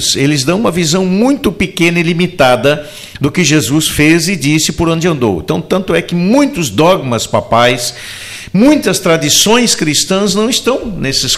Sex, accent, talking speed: male, Brazilian, 160 wpm